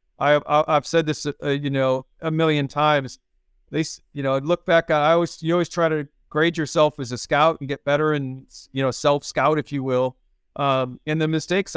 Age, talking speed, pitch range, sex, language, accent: 40-59, 210 wpm, 135-155 Hz, male, English, American